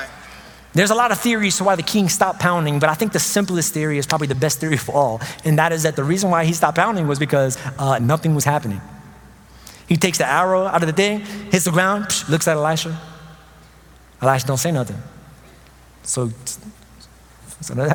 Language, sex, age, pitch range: English, male, 20-39, 145-205 Hz